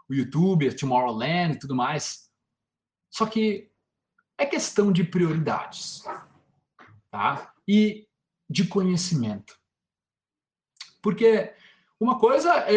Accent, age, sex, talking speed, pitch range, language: Brazilian, 20-39, male, 95 wpm, 140-200 Hz, Portuguese